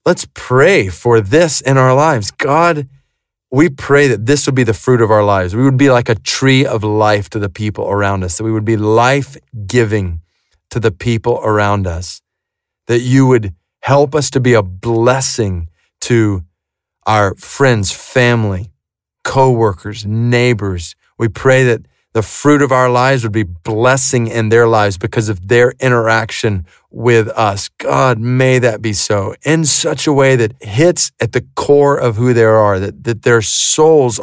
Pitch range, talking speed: 110-140 Hz, 175 wpm